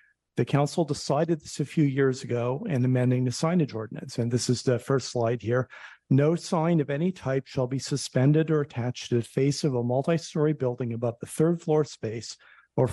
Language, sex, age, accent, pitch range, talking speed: English, male, 50-69, American, 125-150 Hz, 200 wpm